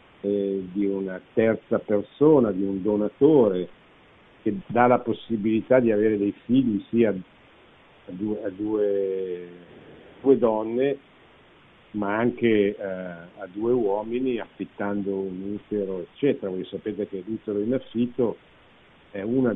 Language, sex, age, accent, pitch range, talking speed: Italian, male, 50-69, native, 100-125 Hz, 115 wpm